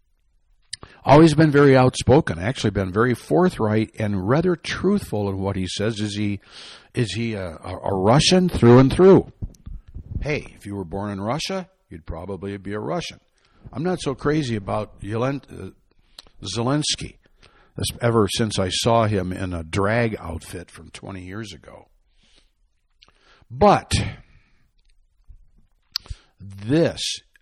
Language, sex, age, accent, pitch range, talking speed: English, male, 60-79, American, 100-145 Hz, 135 wpm